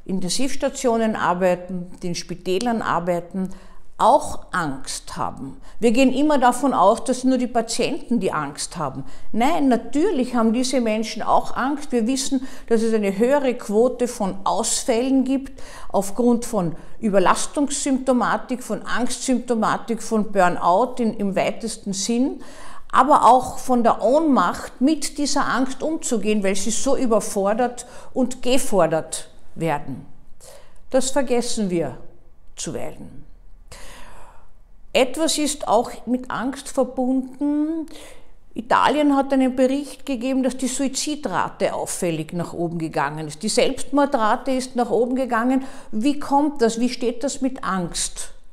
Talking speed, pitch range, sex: 125 wpm, 205-265 Hz, female